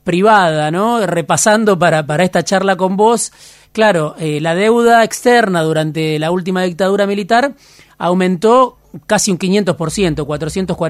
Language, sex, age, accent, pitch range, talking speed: Spanish, male, 30-49, Argentinian, 160-205 Hz, 125 wpm